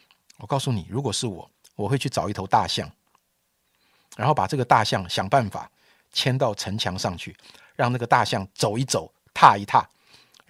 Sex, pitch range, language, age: male, 105-150 Hz, Chinese, 50-69